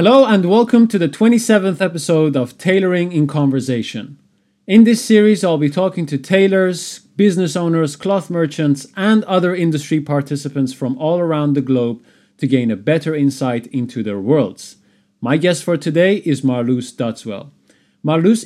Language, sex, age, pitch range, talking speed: English, male, 30-49, 135-180 Hz, 155 wpm